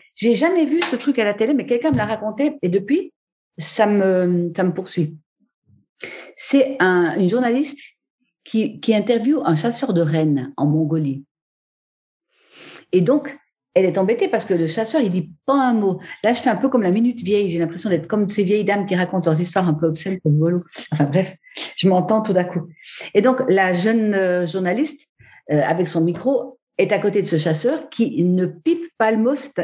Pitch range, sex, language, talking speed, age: 170-240 Hz, female, French, 205 wpm, 50-69